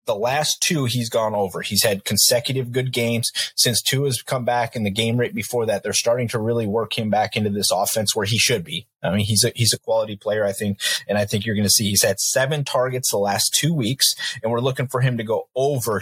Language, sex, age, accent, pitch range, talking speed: English, male, 30-49, American, 105-125 Hz, 260 wpm